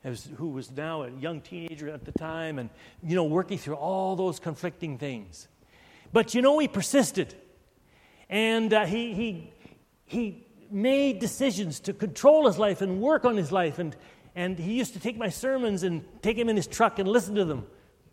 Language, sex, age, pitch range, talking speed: English, male, 60-79, 170-240 Hz, 190 wpm